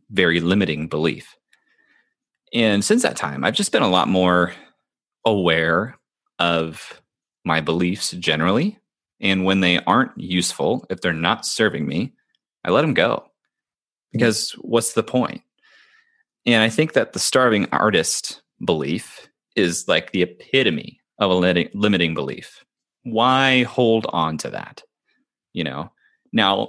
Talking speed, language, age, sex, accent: 135 wpm, English, 30-49, male, American